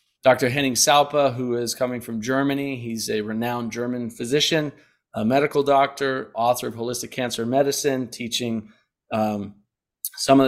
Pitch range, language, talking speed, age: 120-135 Hz, English, 145 wpm, 30-49